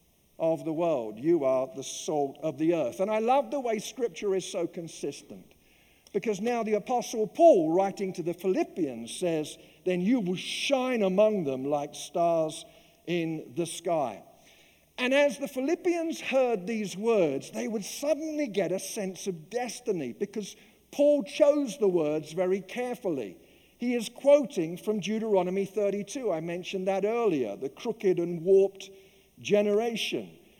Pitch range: 180-240 Hz